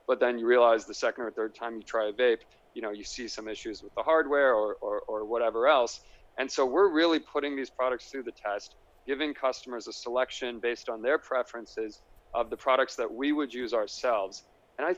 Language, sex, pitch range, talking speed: English, male, 110-150 Hz, 220 wpm